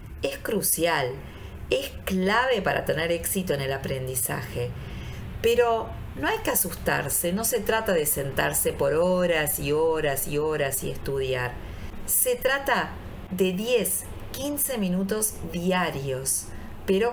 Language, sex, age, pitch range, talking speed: Spanish, female, 40-59, 135-195 Hz, 125 wpm